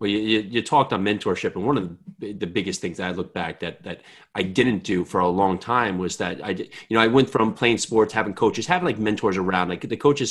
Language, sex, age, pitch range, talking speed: English, male, 30-49, 100-135 Hz, 270 wpm